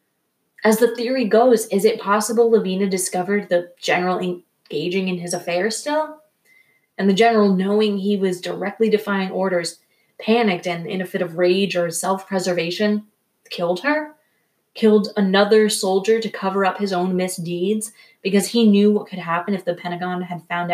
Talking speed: 160 wpm